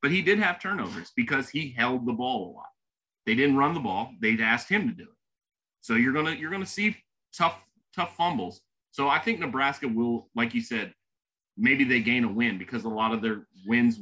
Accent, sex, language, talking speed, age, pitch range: American, male, English, 225 wpm, 30-49, 115-170 Hz